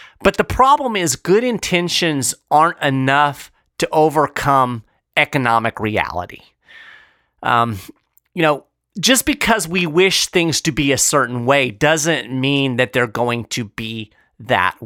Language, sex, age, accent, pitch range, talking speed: English, male, 40-59, American, 120-175 Hz, 135 wpm